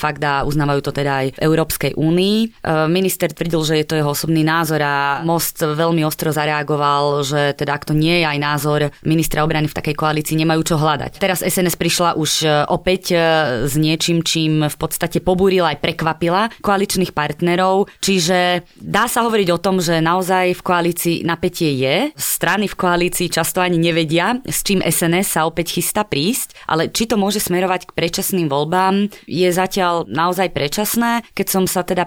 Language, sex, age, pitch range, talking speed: Slovak, female, 20-39, 155-180 Hz, 175 wpm